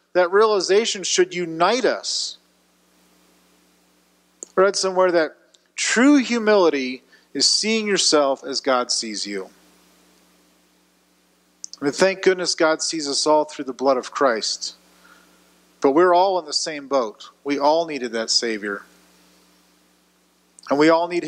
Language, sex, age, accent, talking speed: English, male, 40-59, American, 125 wpm